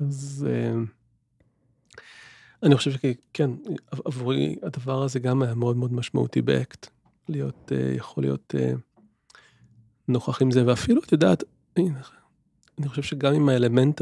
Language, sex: Hebrew, male